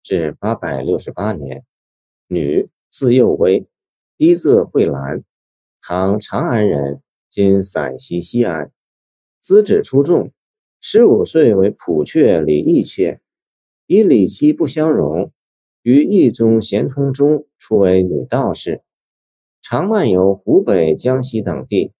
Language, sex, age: Chinese, male, 50-69